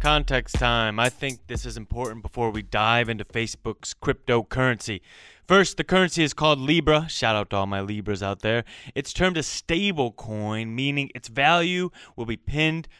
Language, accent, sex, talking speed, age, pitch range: English, American, male, 175 wpm, 20-39, 110-150 Hz